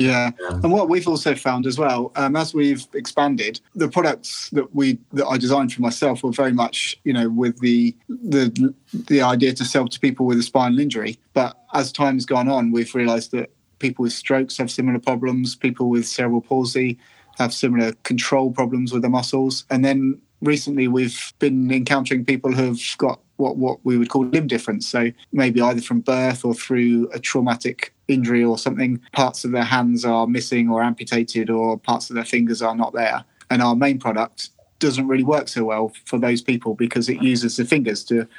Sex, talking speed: male, 200 wpm